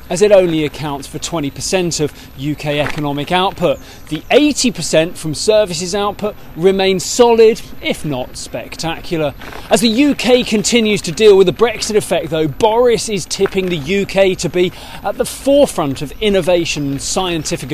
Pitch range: 155-205 Hz